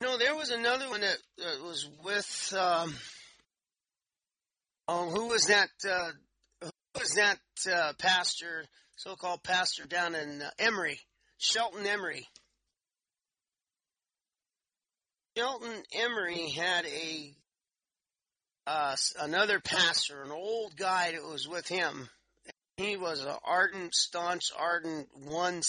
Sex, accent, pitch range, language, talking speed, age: male, American, 155-190 Hz, English, 115 wpm, 40-59